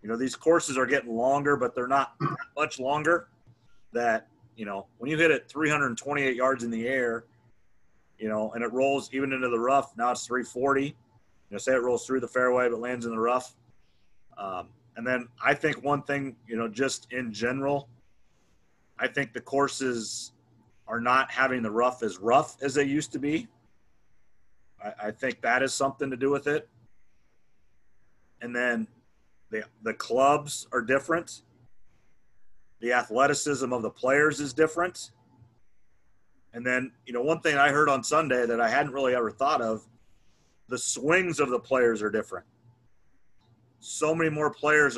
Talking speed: 170 wpm